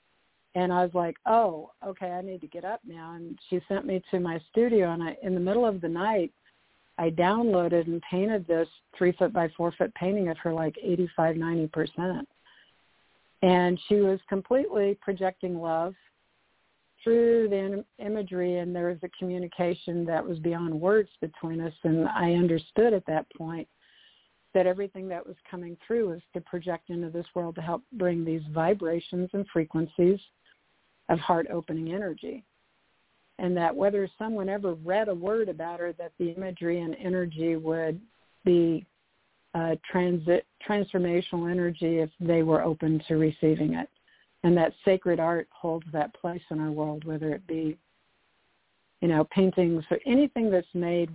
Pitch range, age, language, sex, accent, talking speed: 165-185 Hz, 50-69, English, female, American, 160 wpm